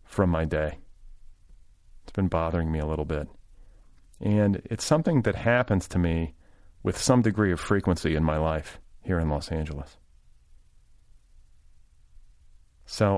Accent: American